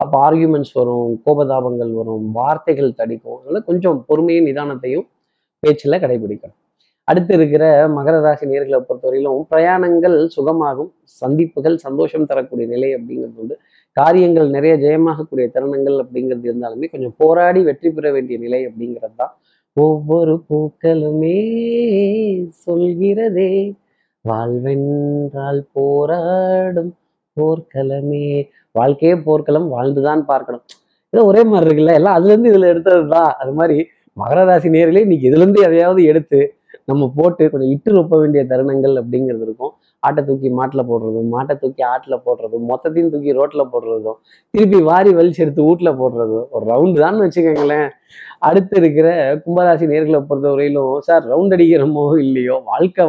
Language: Tamil